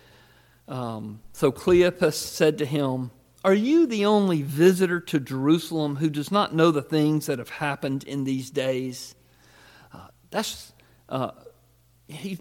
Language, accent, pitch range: English, American, 135-205 Hz